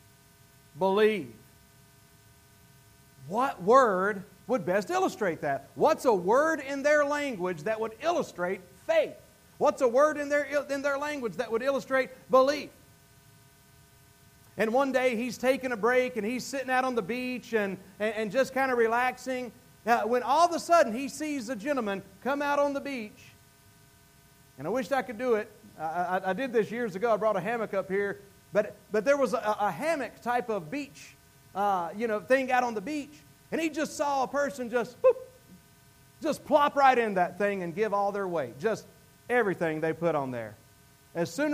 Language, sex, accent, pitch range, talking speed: English, male, American, 180-280 Hz, 185 wpm